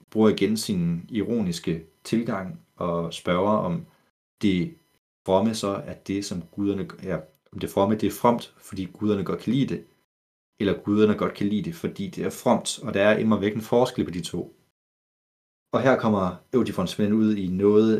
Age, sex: 30-49, male